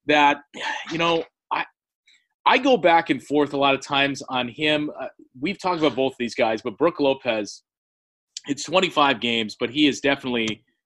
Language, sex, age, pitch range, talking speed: English, male, 30-49, 125-165 Hz, 175 wpm